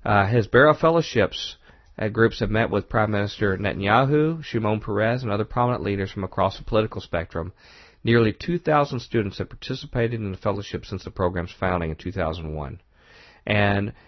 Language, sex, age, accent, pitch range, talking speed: English, male, 40-59, American, 95-120 Hz, 160 wpm